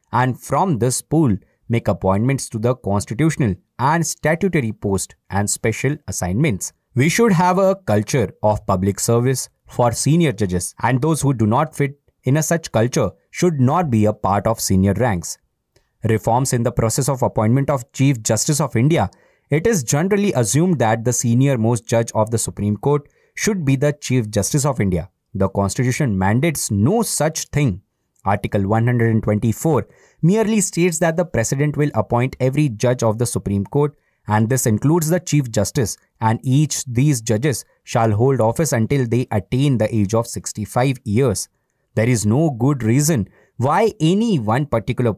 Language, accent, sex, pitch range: English, Indian, male, 110-145 Hz